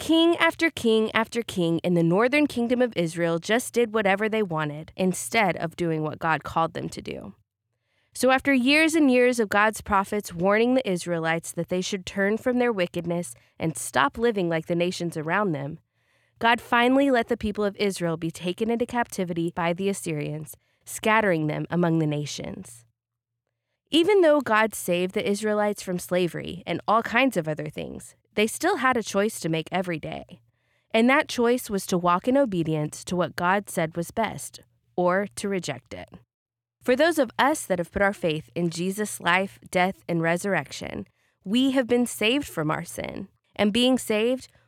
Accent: American